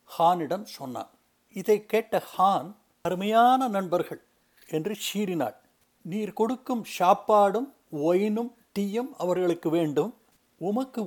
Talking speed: 90 wpm